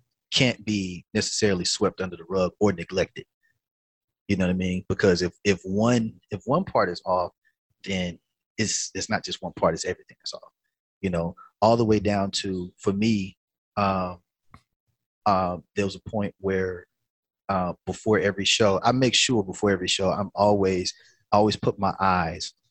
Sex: male